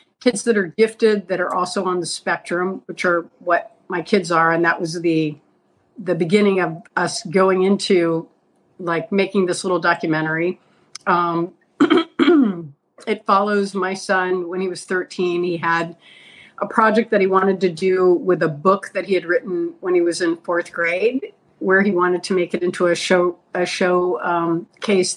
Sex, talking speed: female, 180 wpm